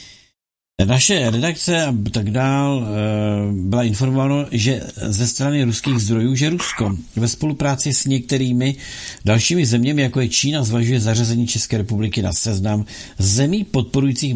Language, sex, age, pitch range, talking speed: Czech, male, 50-69, 110-140 Hz, 130 wpm